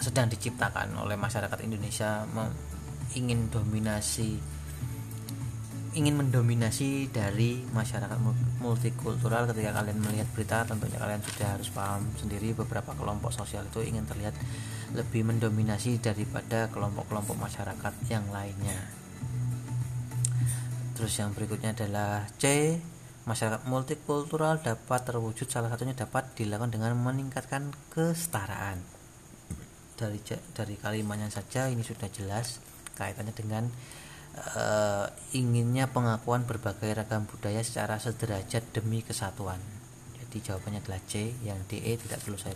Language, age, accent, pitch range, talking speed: Indonesian, 30-49, native, 105-125 Hz, 110 wpm